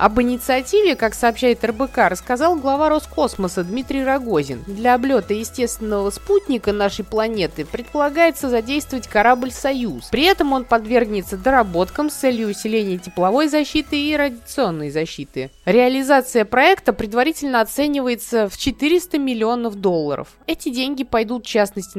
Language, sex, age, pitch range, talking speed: Russian, female, 20-39, 215-275 Hz, 125 wpm